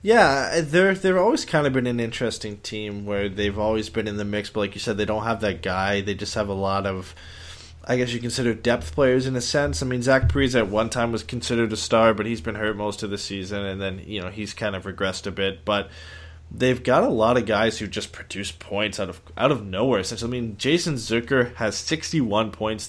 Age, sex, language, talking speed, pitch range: 20-39, male, English, 245 wpm, 100-120 Hz